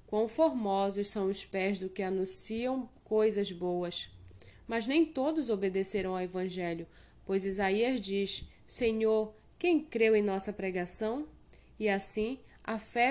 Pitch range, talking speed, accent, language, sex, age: 200-245 Hz, 135 wpm, Brazilian, Portuguese, female, 10-29